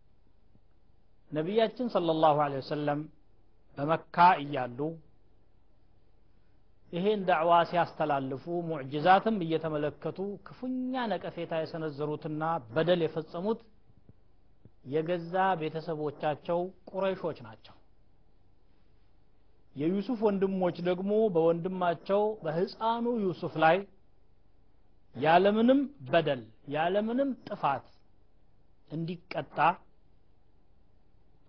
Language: Amharic